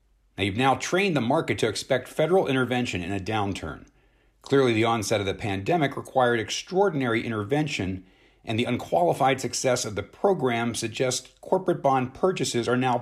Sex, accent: male, American